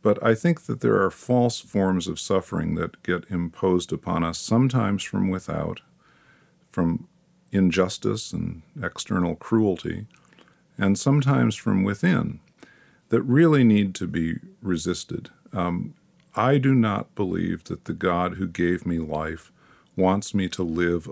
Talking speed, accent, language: 140 wpm, American, English